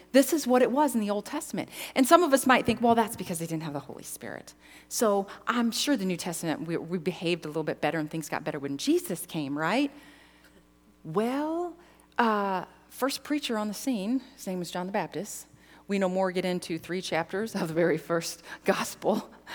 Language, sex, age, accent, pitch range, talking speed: English, female, 40-59, American, 175-285 Hz, 215 wpm